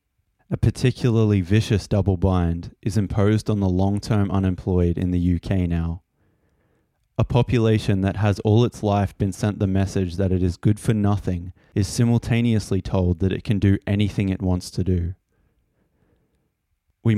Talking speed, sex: 155 wpm, male